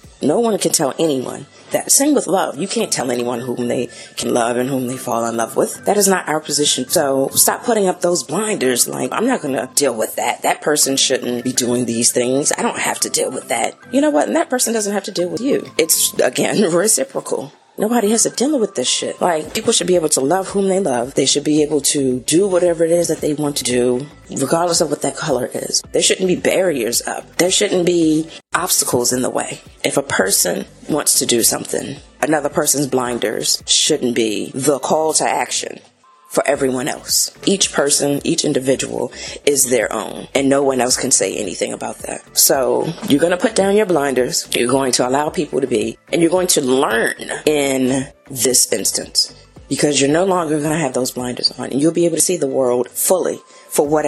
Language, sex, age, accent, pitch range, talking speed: English, female, 30-49, American, 130-180 Hz, 220 wpm